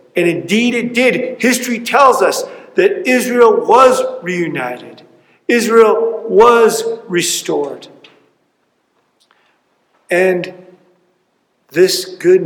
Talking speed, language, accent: 80 wpm, English, American